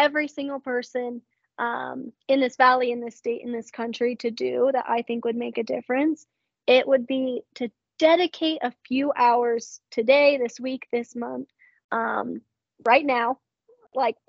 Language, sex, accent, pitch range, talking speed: English, female, American, 240-270 Hz, 165 wpm